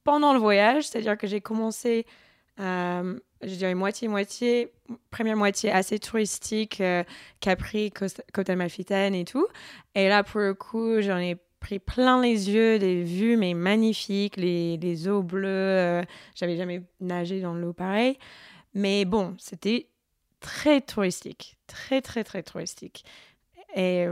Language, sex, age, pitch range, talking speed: French, female, 20-39, 180-220 Hz, 145 wpm